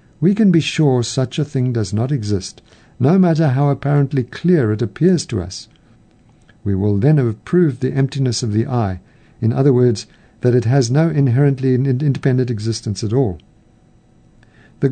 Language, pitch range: English, 115-150 Hz